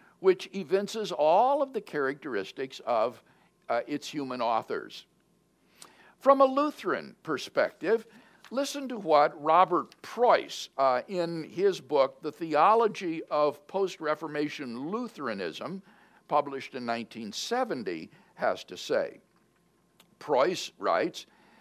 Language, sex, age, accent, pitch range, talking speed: English, male, 60-79, American, 160-245 Hz, 105 wpm